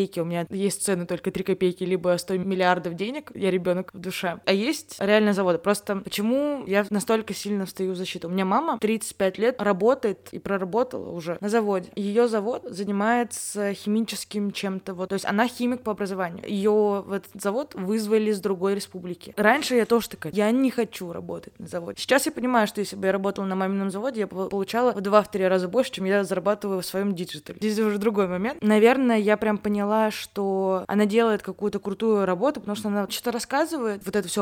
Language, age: Russian, 20-39